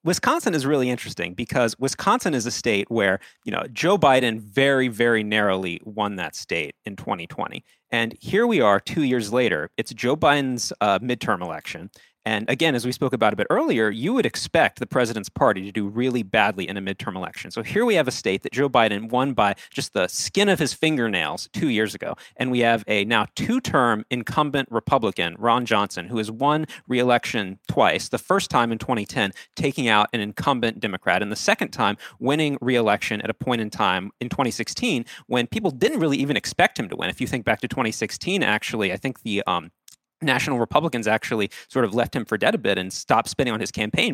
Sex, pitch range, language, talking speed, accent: male, 110-135 Hz, English, 210 wpm, American